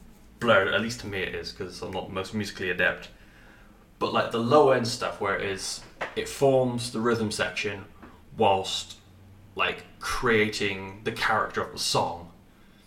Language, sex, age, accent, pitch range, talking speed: English, male, 20-39, British, 95-115 Hz, 165 wpm